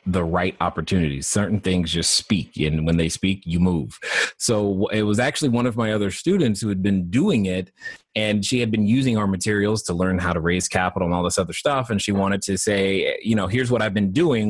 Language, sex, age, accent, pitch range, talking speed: English, male, 30-49, American, 95-120 Hz, 235 wpm